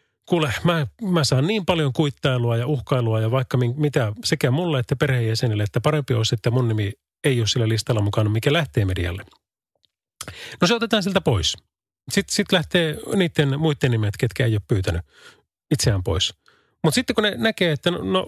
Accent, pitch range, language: native, 120-165 Hz, Finnish